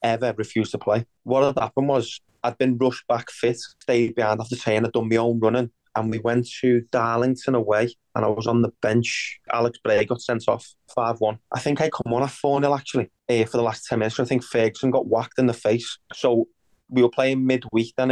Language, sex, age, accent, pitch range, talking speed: English, male, 20-39, British, 115-130 Hz, 230 wpm